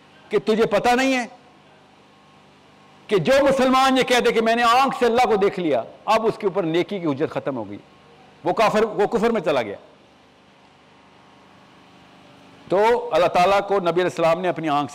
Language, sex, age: Urdu, male, 50-69